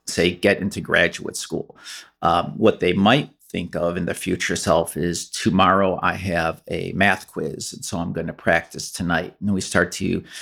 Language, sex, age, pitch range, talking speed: English, male, 40-59, 95-120 Hz, 190 wpm